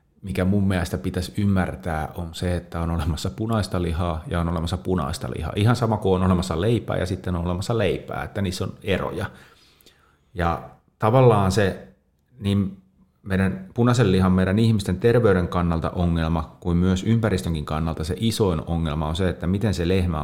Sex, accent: male, native